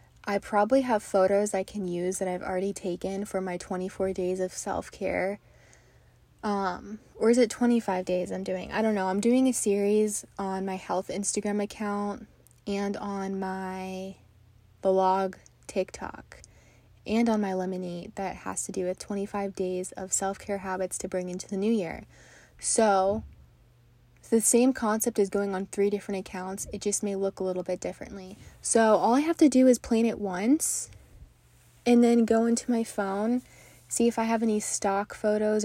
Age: 20-39